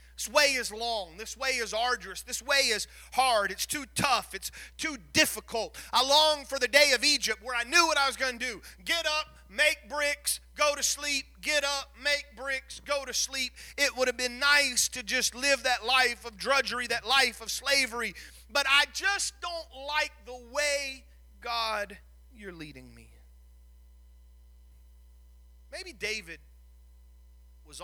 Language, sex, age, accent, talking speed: English, male, 40-59, American, 170 wpm